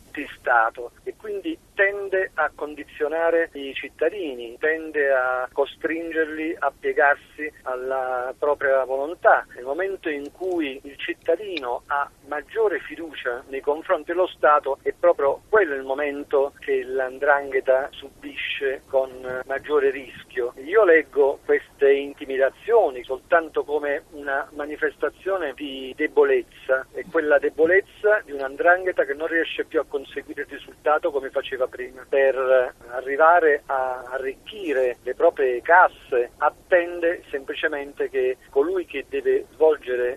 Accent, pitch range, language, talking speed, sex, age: native, 135-200 Hz, Italian, 120 wpm, male, 50-69